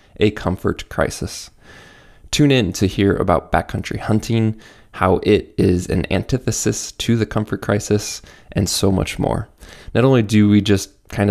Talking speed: 155 wpm